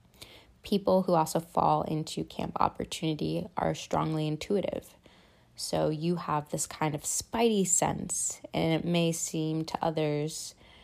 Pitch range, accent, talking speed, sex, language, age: 145-165 Hz, American, 135 wpm, female, English, 20-39